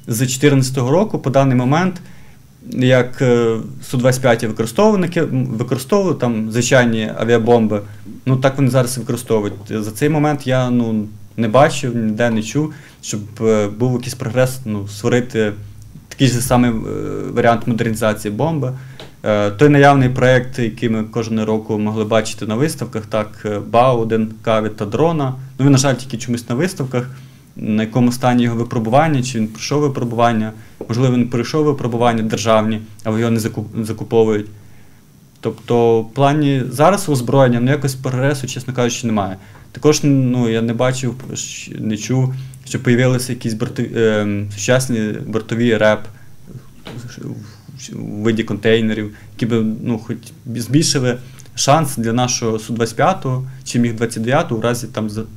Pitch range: 110-130 Hz